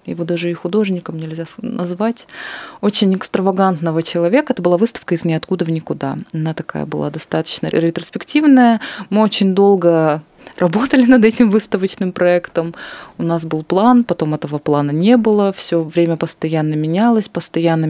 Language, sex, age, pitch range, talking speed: Russian, female, 20-39, 165-200 Hz, 145 wpm